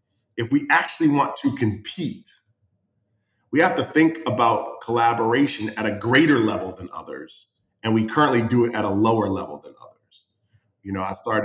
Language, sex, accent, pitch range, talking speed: English, male, American, 105-120 Hz, 175 wpm